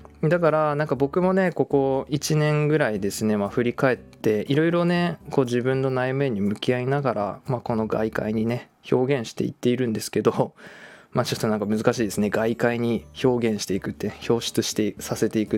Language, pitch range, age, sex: Japanese, 110-165 Hz, 20-39, male